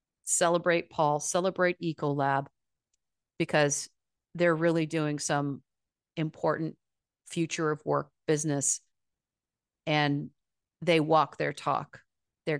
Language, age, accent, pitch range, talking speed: English, 40-59, American, 140-170 Hz, 95 wpm